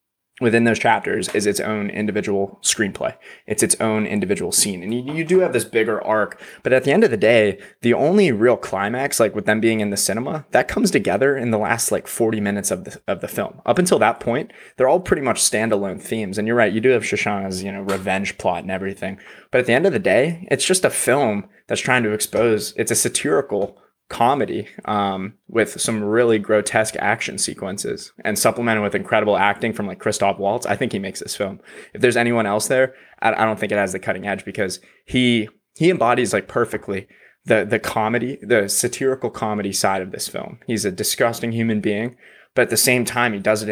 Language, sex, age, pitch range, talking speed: English, male, 20-39, 100-120 Hz, 220 wpm